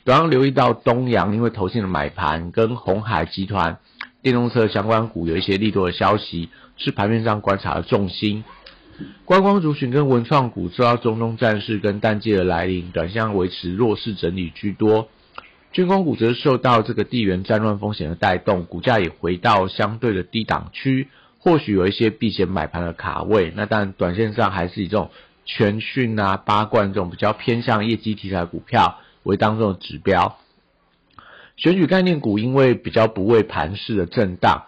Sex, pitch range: male, 95-115 Hz